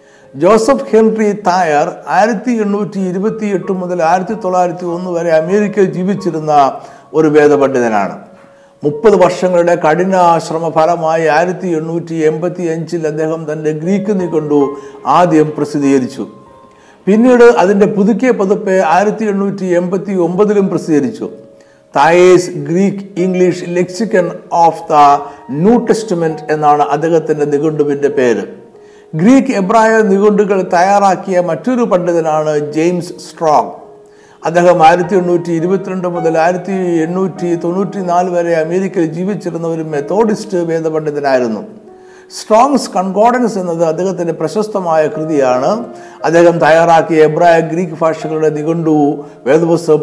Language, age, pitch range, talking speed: Malayalam, 60-79, 155-200 Hz, 100 wpm